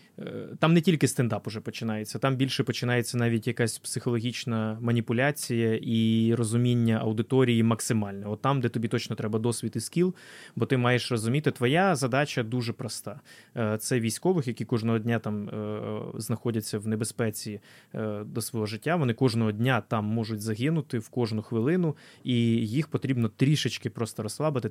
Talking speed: 150 wpm